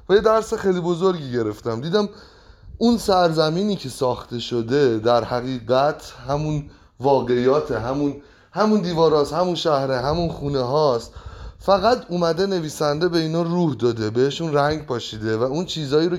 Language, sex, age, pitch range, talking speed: Persian, male, 30-49, 125-175 Hz, 135 wpm